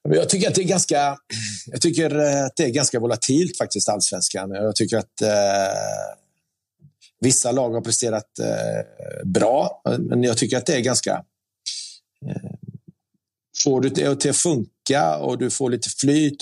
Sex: male